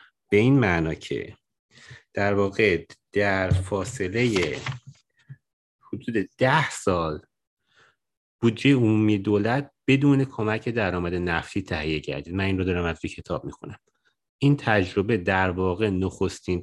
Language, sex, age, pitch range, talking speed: Persian, male, 30-49, 100-125 Hz, 115 wpm